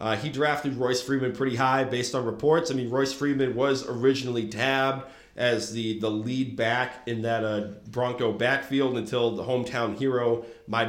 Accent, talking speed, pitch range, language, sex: American, 175 wpm, 115-135 Hz, English, male